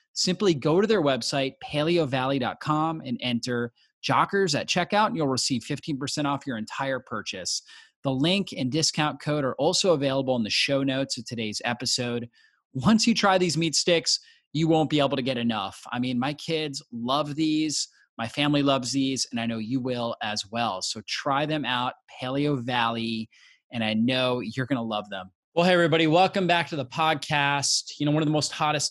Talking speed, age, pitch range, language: 195 wpm, 30-49, 125-155 Hz, English